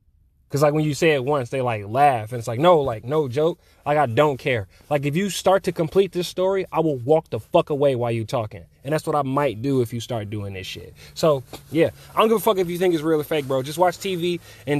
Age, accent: 20-39, American